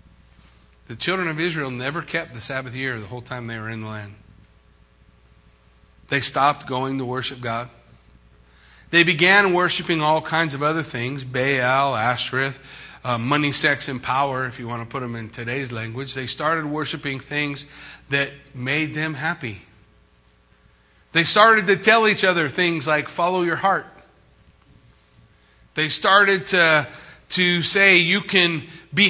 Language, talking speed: English, 150 wpm